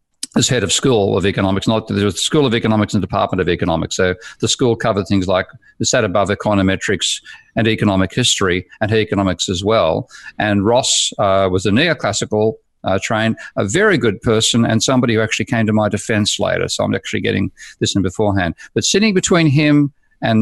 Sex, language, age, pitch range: male, English, 50-69, 100-120 Hz